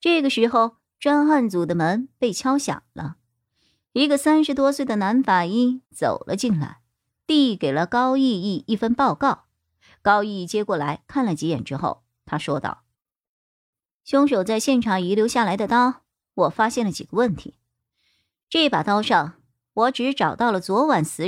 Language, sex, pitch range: Chinese, male, 175-270 Hz